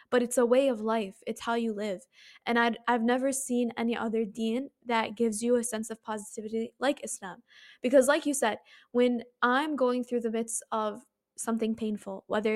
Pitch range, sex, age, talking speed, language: 220-250 Hz, female, 10-29, 190 wpm, English